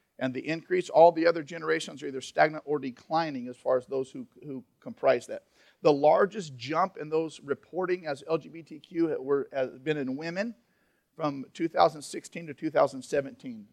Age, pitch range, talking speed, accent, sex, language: 50-69, 135-175 Hz, 155 wpm, American, male, English